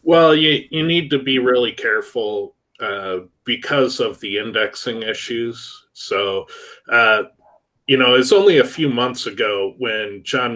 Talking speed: 150 wpm